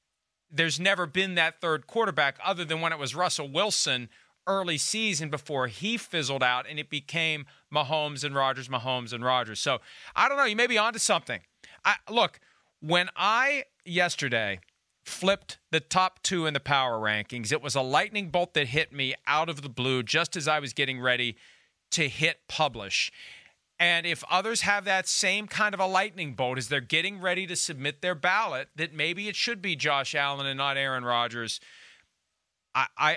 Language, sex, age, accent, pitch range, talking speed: English, male, 40-59, American, 135-180 Hz, 185 wpm